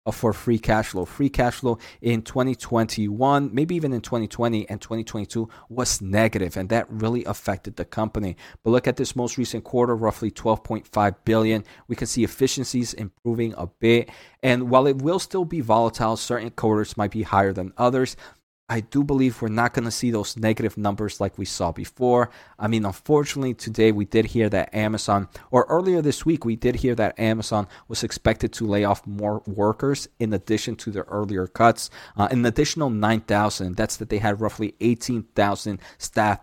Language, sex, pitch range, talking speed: English, male, 105-120 Hz, 185 wpm